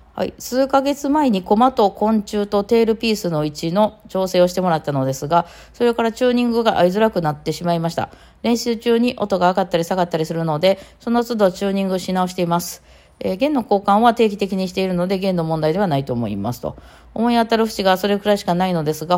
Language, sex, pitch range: Japanese, female, 135-205 Hz